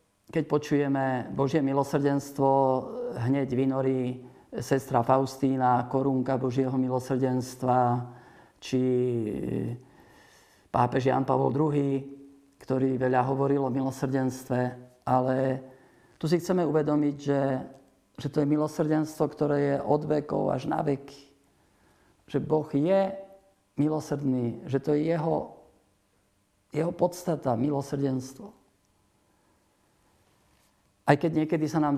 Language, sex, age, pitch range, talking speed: Slovak, male, 50-69, 130-150 Hz, 100 wpm